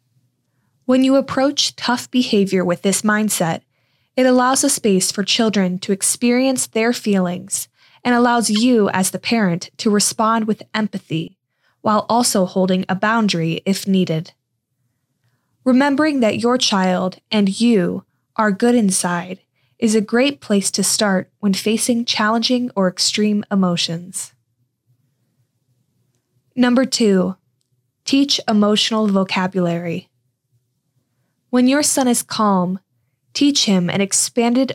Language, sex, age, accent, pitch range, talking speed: English, female, 10-29, American, 160-225 Hz, 120 wpm